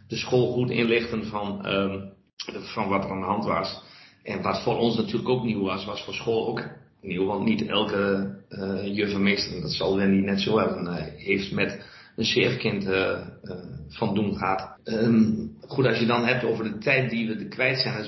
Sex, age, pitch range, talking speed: male, 40-59, 100-115 Hz, 210 wpm